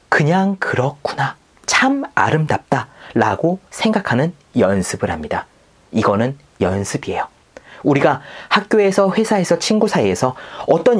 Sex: male